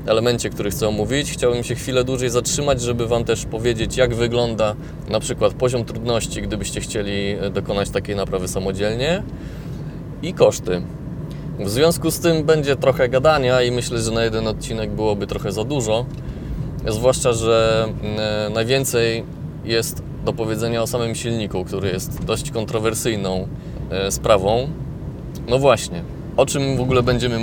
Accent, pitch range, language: native, 105-135 Hz, Polish